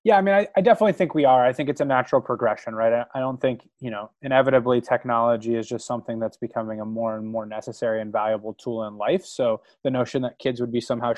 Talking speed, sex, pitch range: 245 wpm, male, 115-150 Hz